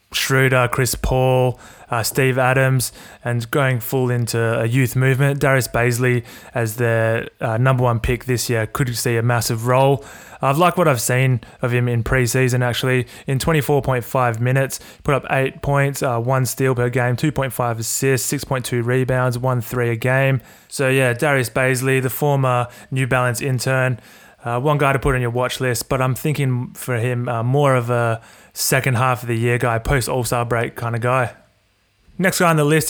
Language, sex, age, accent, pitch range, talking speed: English, male, 20-39, Australian, 125-140 Hz, 185 wpm